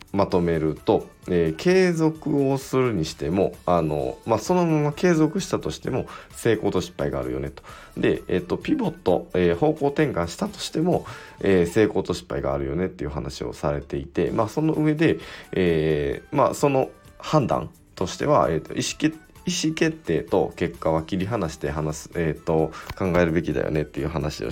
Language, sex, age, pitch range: Japanese, male, 20-39, 80-100 Hz